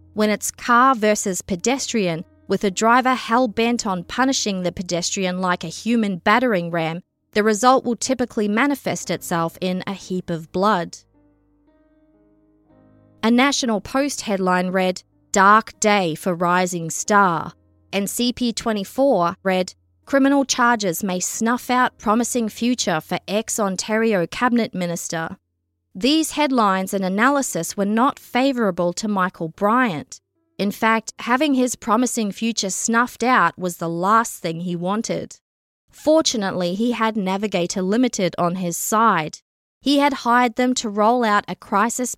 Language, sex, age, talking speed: English, female, 20-39, 135 wpm